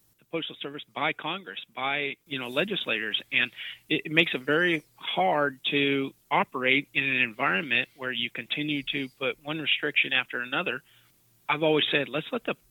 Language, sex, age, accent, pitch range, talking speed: English, male, 30-49, American, 125-155 Hz, 160 wpm